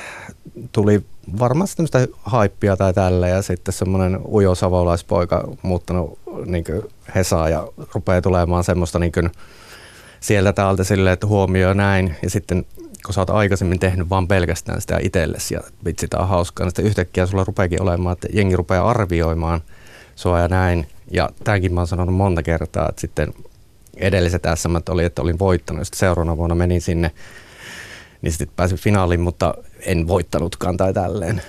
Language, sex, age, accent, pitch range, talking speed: Finnish, male, 30-49, native, 90-100 Hz, 155 wpm